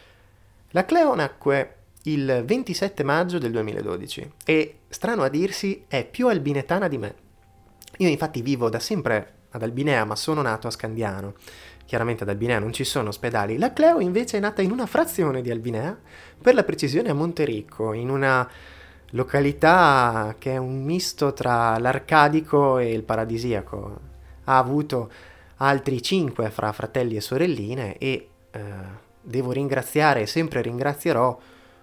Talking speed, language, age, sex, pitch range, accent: 145 wpm, Italian, 20-39, male, 105-140 Hz, native